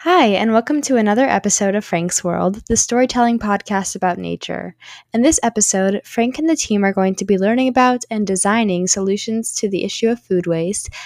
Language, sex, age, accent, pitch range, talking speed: English, female, 10-29, American, 185-230 Hz, 195 wpm